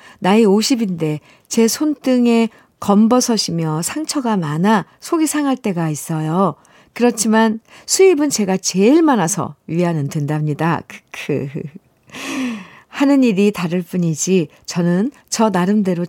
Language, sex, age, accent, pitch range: Korean, female, 50-69, native, 170-235 Hz